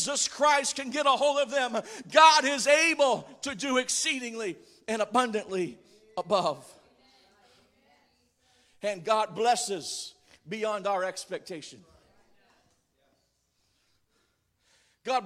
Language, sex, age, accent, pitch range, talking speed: English, male, 50-69, American, 185-255 Hz, 90 wpm